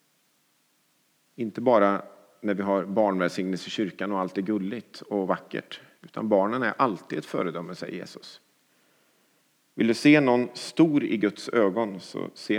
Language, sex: English, male